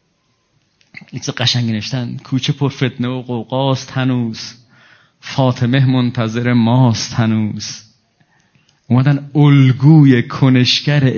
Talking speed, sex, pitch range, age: 80 wpm, male, 125-175 Hz, 30-49